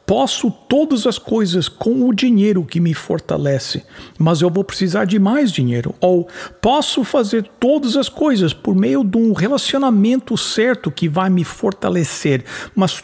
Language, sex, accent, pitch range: English, male, Brazilian, 180-245 Hz